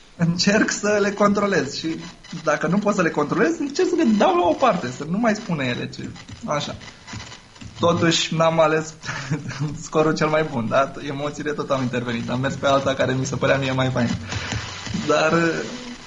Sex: male